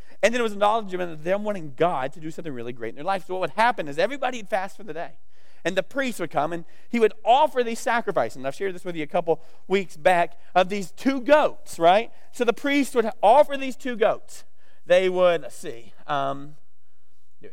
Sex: male